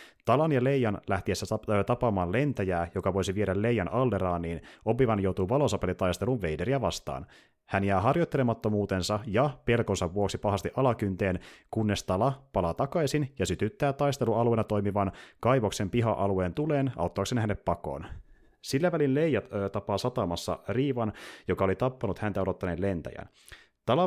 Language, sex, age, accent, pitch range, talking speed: Finnish, male, 30-49, native, 95-125 Hz, 135 wpm